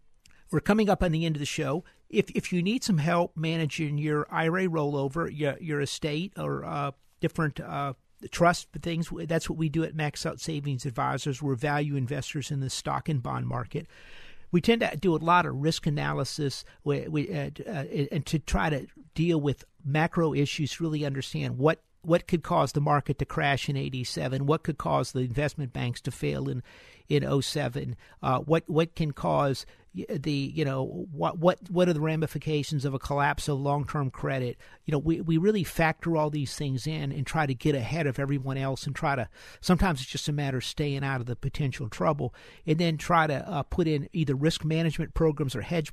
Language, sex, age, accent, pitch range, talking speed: English, male, 50-69, American, 140-165 Hz, 205 wpm